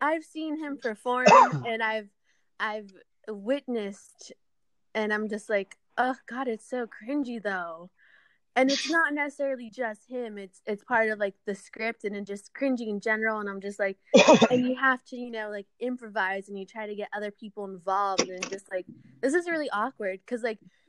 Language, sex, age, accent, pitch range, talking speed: English, female, 20-39, American, 200-250 Hz, 190 wpm